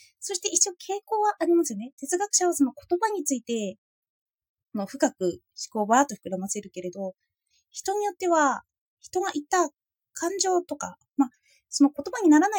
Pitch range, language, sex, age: 210-335 Hz, Japanese, female, 20-39